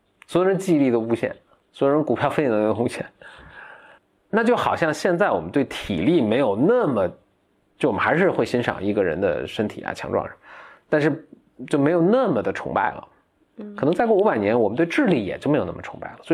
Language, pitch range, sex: Chinese, 105-150 Hz, male